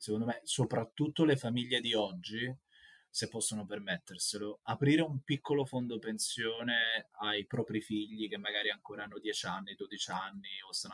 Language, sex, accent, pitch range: Italian, male, native, 105-135 Hz